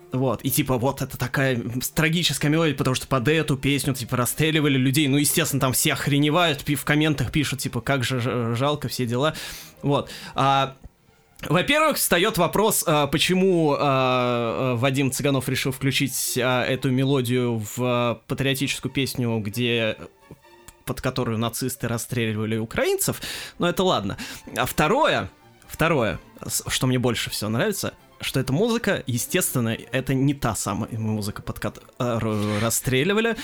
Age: 20-39